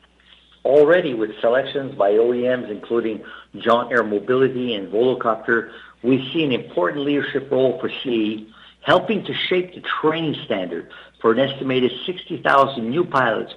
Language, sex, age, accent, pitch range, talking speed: English, male, 50-69, American, 115-155 Hz, 135 wpm